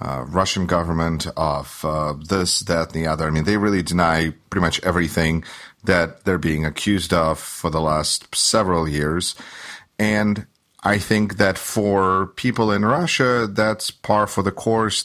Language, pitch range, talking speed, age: English, 80-100 Hz, 165 wpm, 40-59